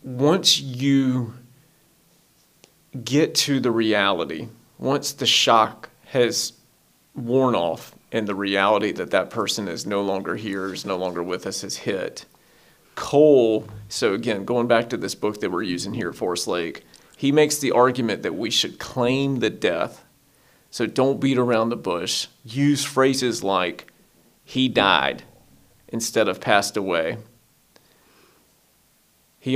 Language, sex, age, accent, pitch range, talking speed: English, male, 40-59, American, 110-135 Hz, 140 wpm